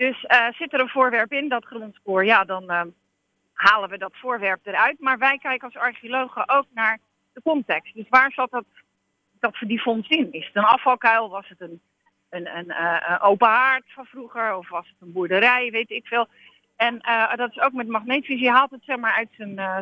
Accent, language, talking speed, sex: Dutch, Dutch, 220 wpm, female